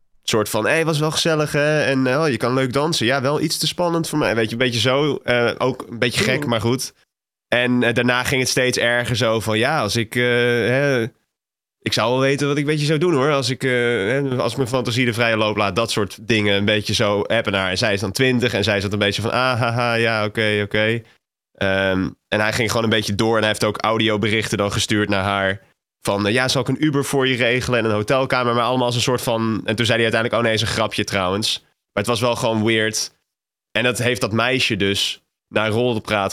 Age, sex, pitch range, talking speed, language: 20-39, male, 105-125 Hz, 255 wpm, Dutch